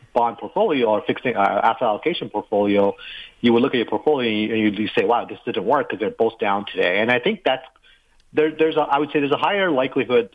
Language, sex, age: English, male, 30-49